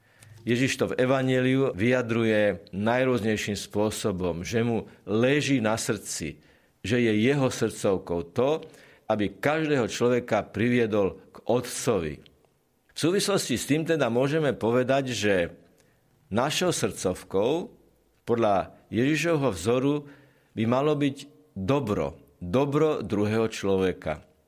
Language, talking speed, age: Slovak, 105 wpm, 50-69